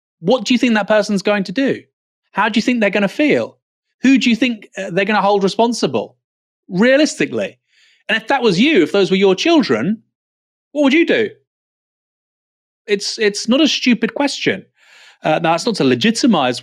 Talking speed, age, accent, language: 190 wpm, 30-49, British, English